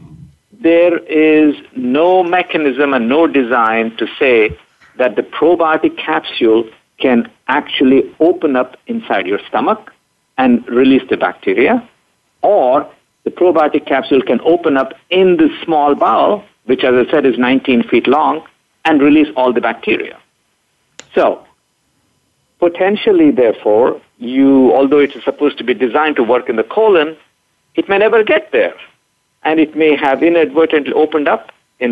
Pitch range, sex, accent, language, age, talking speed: 125-170 Hz, male, Indian, English, 50-69, 145 wpm